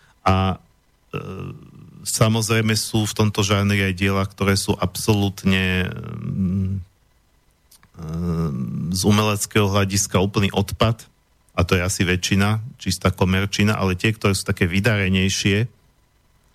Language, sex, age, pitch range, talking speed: Slovak, male, 40-59, 95-110 Hz, 110 wpm